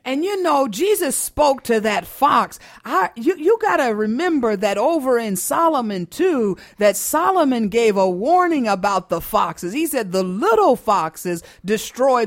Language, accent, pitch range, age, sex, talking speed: English, American, 210-305 Hz, 50-69, female, 150 wpm